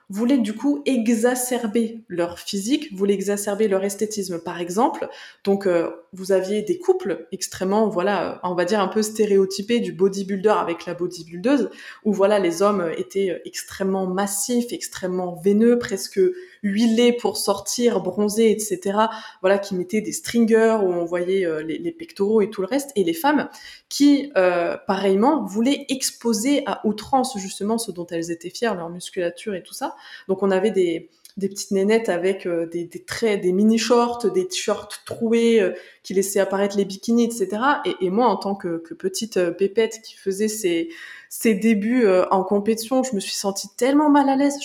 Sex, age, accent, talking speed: female, 20-39, French, 175 wpm